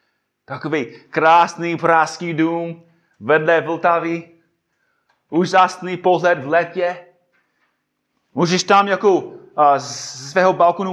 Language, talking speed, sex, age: Czech, 90 wpm, male, 30-49